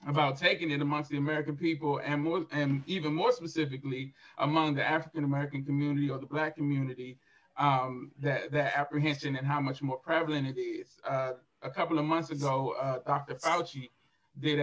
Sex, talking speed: male, 175 wpm